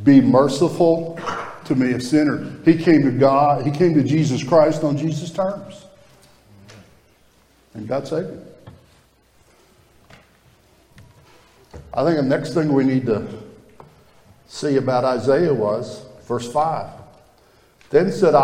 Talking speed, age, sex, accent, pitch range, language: 125 wpm, 60-79, male, American, 140-185 Hz, English